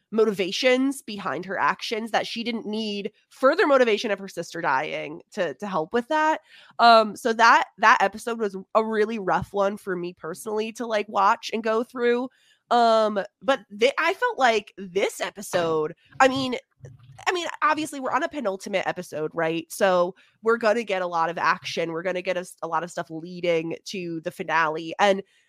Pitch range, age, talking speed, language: 180-235 Hz, 20-39, 185 wpm, English